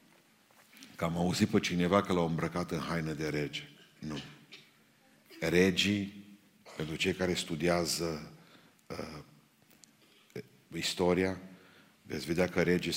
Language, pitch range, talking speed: Romanian, 80-90 Hz, 110 wpm